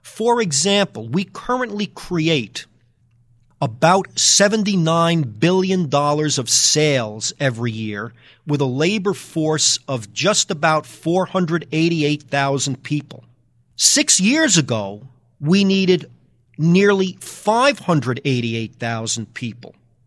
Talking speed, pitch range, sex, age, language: 85 wpm, 125-175 Hz, male, 40-59, English